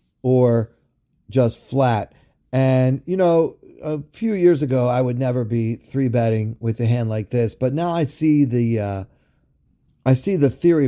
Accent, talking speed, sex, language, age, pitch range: American, 165 wpm, male, English, 40-59, 115-135 Hz